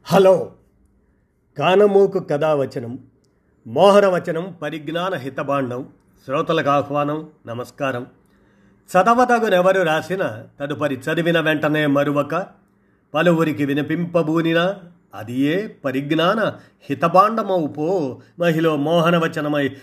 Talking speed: 70 wpm